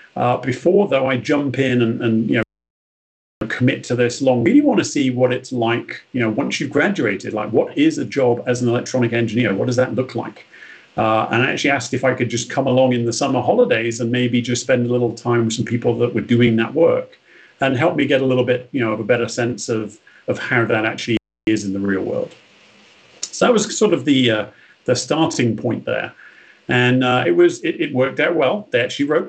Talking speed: 240 wpm